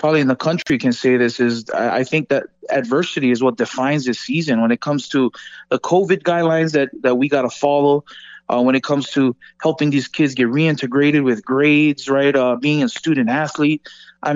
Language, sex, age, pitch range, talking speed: English, male, 20-39, 135-185 Hz, 200 wpm